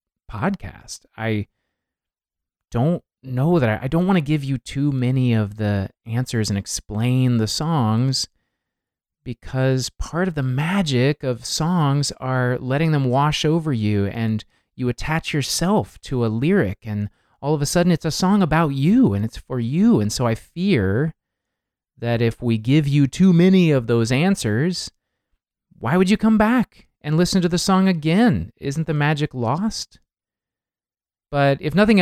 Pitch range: 110-160 Hz